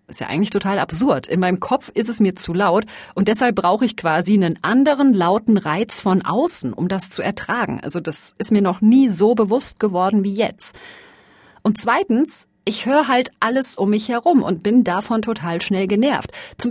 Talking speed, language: 200 wpm, German